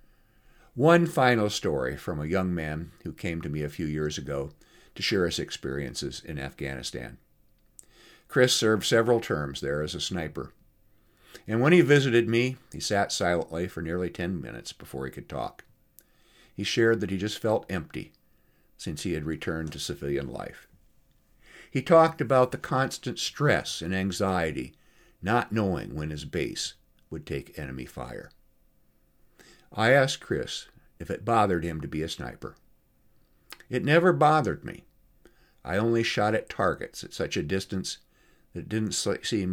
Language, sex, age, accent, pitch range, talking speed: English, male, 50-69, American, 75-115 Hz, 160 wpm